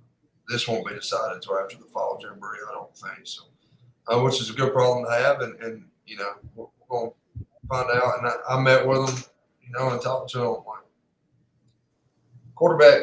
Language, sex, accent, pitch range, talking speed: English, male, American, 115-150 Hz, 215 wpm